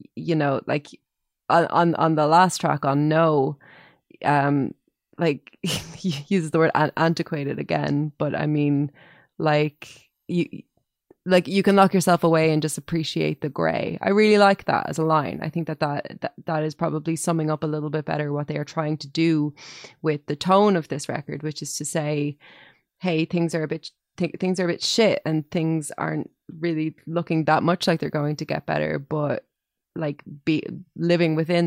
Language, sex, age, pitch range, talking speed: English, female, 20-39, 150-175 Hz, 190 wpm